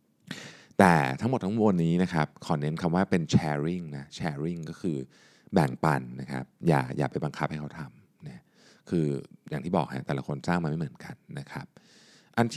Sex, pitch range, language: male, 75-105 Hz, Thai